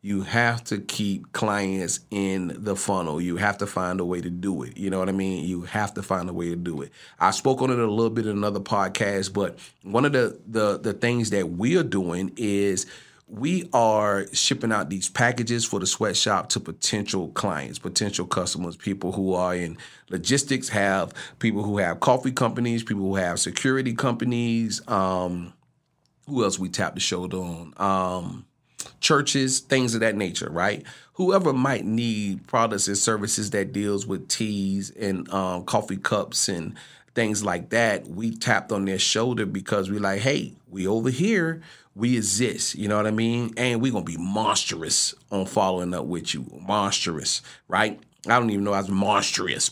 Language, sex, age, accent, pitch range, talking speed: English, male, 40-59, American, 95-120 Hz, 185 wpm